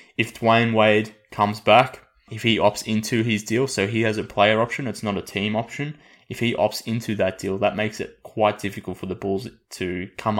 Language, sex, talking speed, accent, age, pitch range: English, male, 220 wpm, Australian, 20-39, 95-110 Hz